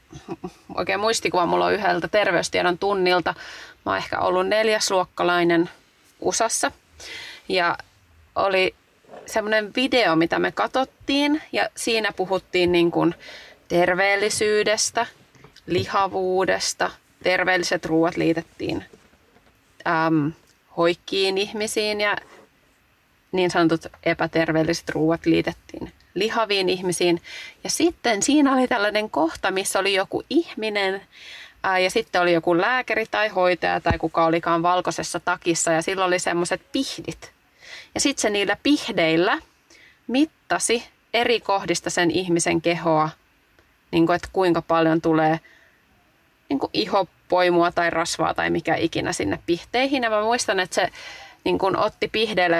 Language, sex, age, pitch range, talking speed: Finnish, female, 30-49, 170-220 Hz, 120 wpm